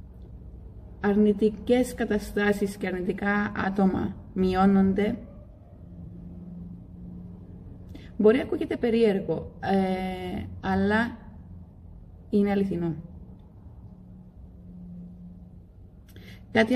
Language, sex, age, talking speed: Greek, female, 30-49, 50 wpm